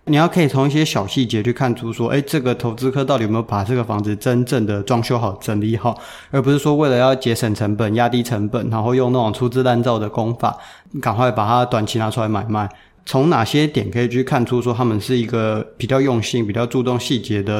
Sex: male